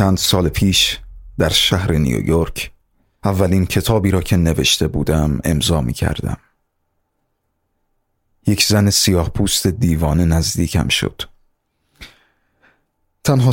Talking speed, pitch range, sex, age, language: 95 wpm, 80-100 Hz, male, 30-49, Persian